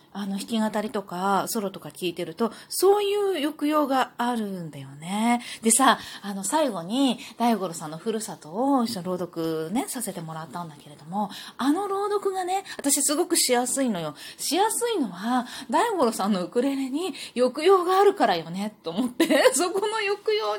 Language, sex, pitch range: Japanese, female, 195-315 Hz